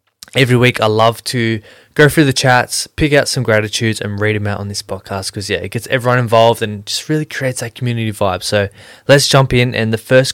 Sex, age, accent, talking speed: male, 20-39, Australian, 230 wpm